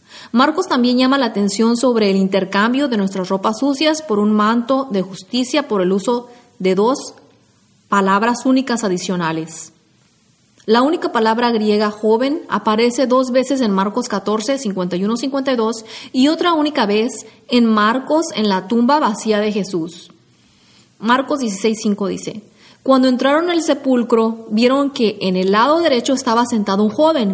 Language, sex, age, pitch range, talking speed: English, female, 30-49, 200-265 Hz, 145 wpm